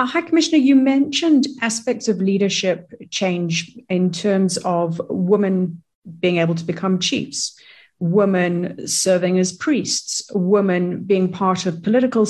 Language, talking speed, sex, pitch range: English, 130 wpm, female, 175-220 Hz